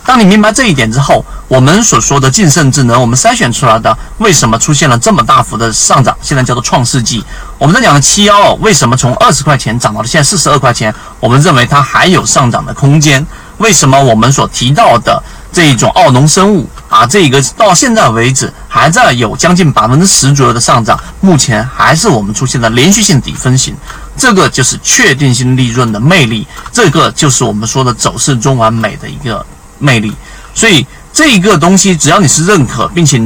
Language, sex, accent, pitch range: Chinese, male, native, 120-170 Hz